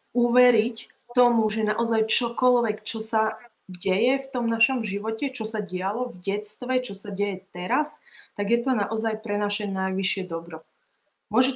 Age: 20-39